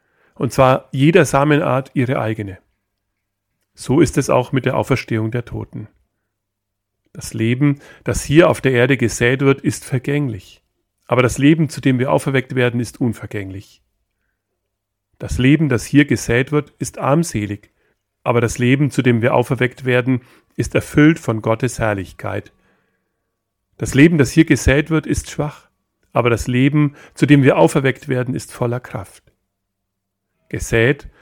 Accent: German